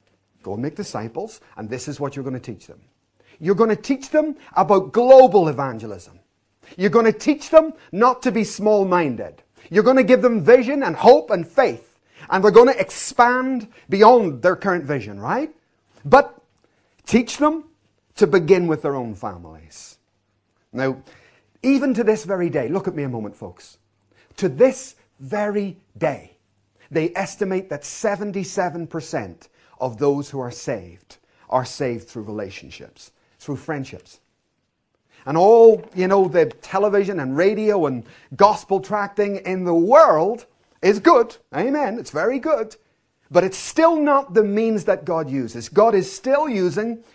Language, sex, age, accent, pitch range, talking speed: English, male, 40-59, British, 135-220 Hz, 155 wpm